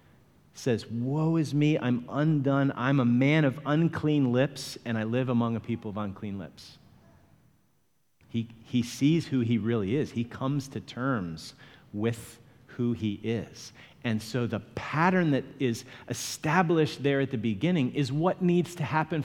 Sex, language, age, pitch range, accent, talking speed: male, English, 40-59, 115-140 Hz, American, 160 wpm